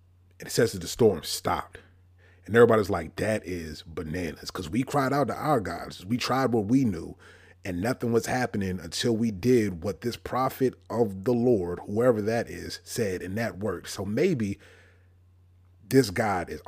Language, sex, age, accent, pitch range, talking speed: English, male, 30-49, American, 90-125 Hz, 180 wpm